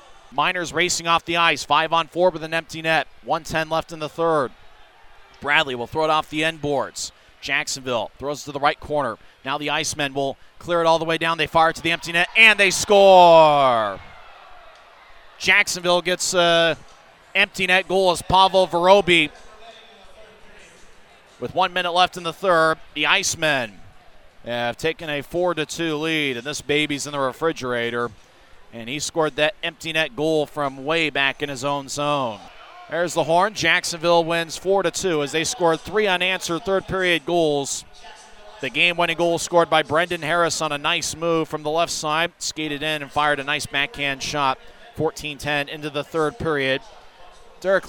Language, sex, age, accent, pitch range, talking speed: English, male, 30-49, American, 145-170 Hz, 175 wpm